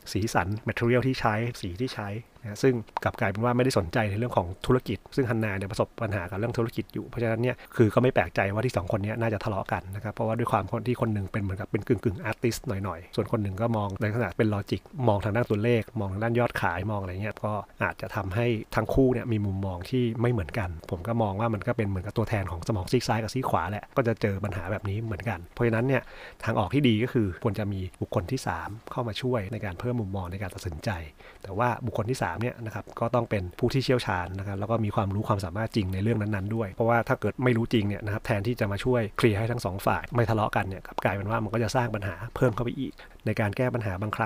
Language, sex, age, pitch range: Thai, male, 30-49, 100-120 Hz